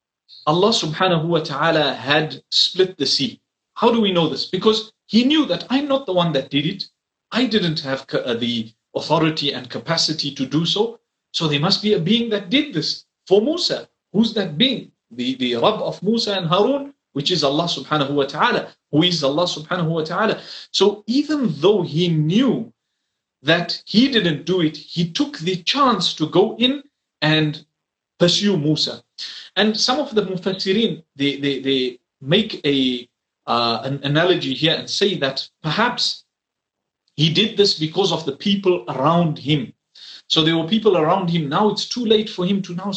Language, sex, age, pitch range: English, male, 40-59, 150-210 Hz